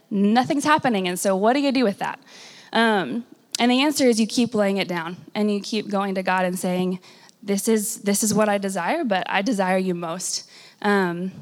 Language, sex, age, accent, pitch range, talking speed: English, female, 20-39, American, 185-215 Hz, 215 wpm